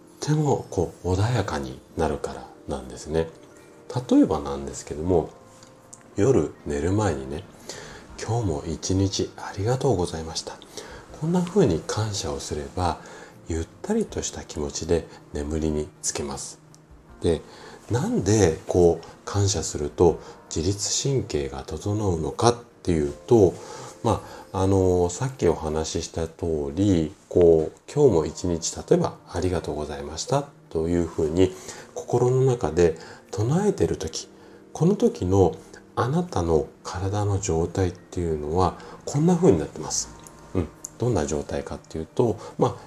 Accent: native